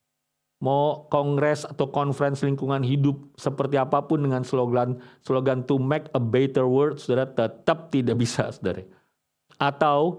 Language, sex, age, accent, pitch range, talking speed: English, male, 50-69, Indonesian, 140-180 Hz, 130 wpm